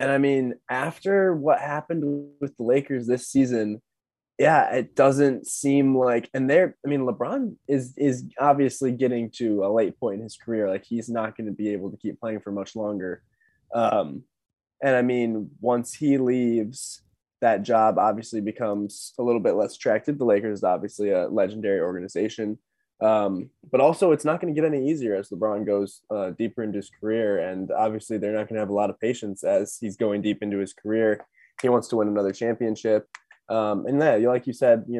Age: 20-39